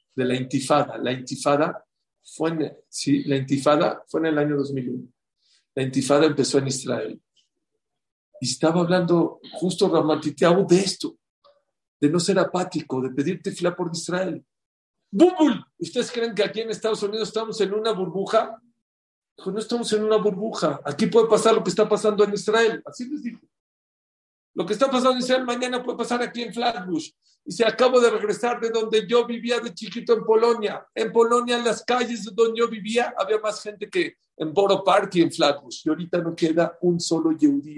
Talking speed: 185 wpm